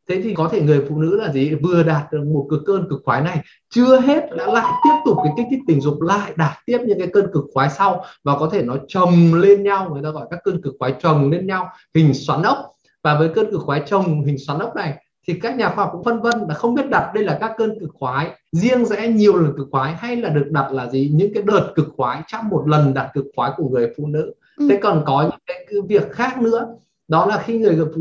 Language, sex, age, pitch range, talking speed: Vietnamese, male, 20-39, 150-205 Hz, 270 wpm